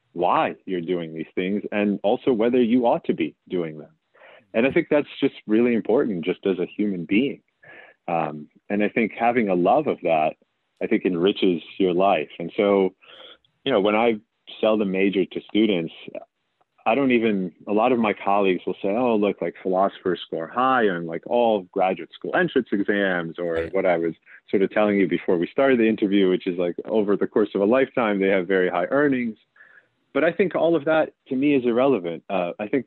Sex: male